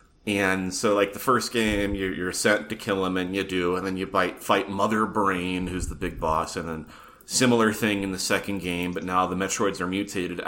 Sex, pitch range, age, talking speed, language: male, 90-110 Hz, 30-49, 225 wpm, English